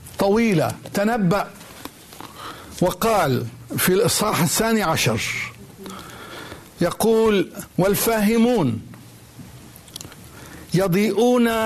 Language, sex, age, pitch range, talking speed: Arabic, male, 60-79, 155-215 Hz, 50 wpm